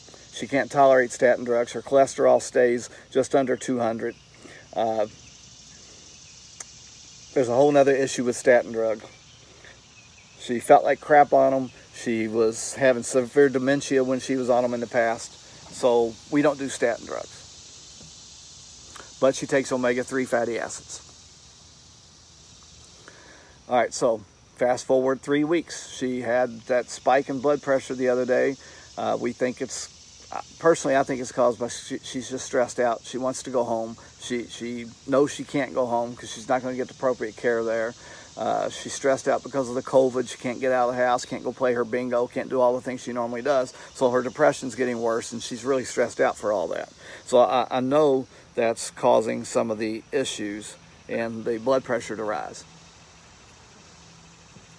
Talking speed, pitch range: 175 wpm, 120-135 Hz